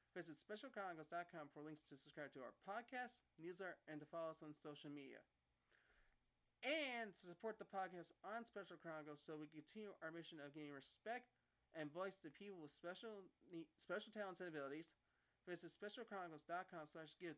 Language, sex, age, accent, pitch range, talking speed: English, male, 30-49, American, 155-200 Hz, 160 wpm